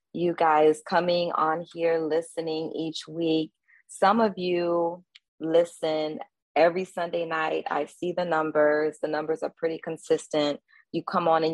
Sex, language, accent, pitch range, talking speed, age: female, English, American, 155-175 Hz, 145 wpm, 20-39